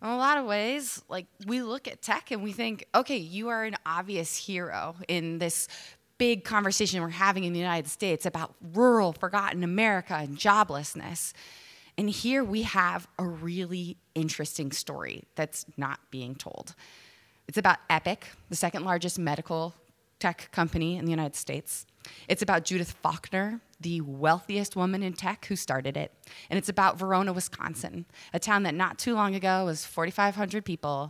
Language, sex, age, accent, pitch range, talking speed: English, female, 20-39, American, 155-195 Hz, 170 wpm